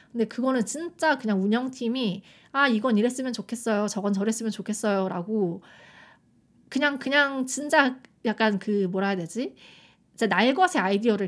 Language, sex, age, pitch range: Korean, female, 20-39, 205-255 Hz